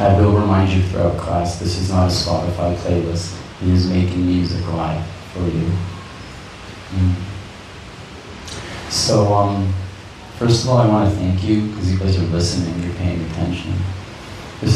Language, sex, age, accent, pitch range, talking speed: English, male, 30-49, American, 90-110 Hz, 160 wpm